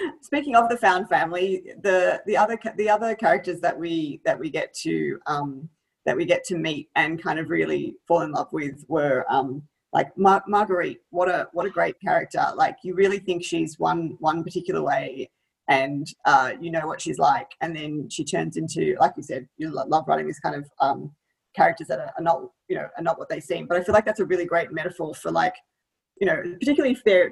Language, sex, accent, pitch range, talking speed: English, female, Australian, 160-205 Hz, 215 wpm